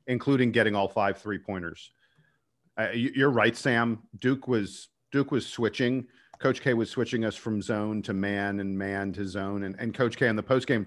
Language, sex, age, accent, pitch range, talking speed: English, male, 40-59, American, 105-130 Hz, 190 wpm